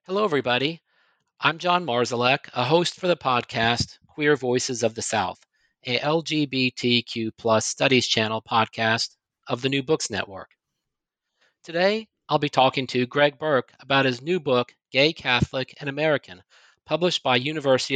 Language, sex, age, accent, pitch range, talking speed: English, male, 40-59, American, 120-150 Hz, 145 wpm